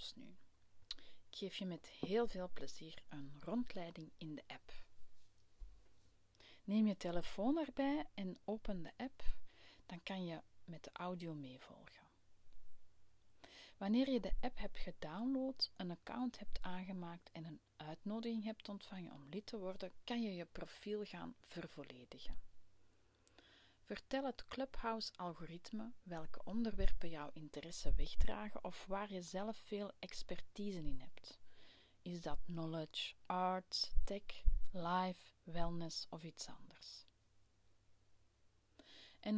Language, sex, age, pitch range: Dutch, female, 30-49, 140-210 Hz